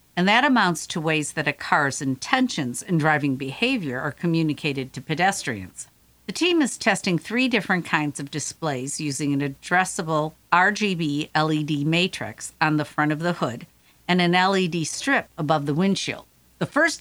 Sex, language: female, English